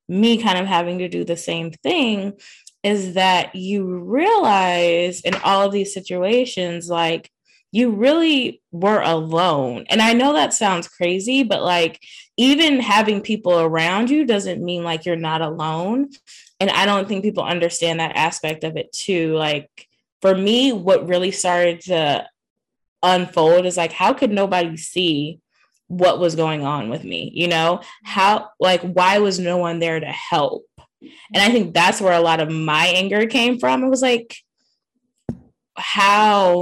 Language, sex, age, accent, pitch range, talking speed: English, female, 10-29, American, 165-205 Hz, 165 wpm